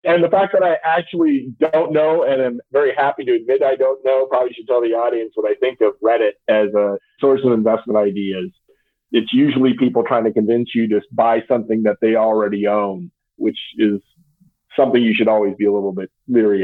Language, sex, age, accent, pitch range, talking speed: English, male, 40-59, American, 110-150 Hz, 210 wpm